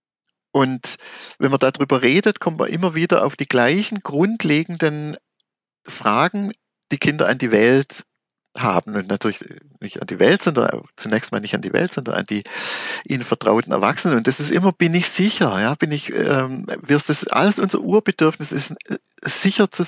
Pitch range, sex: 130-175 Hz, male